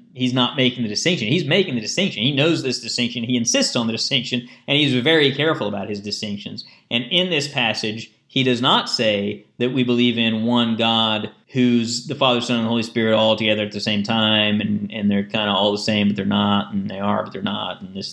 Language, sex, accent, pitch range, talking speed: English, male, American, 110-130 Hz, 235 wpm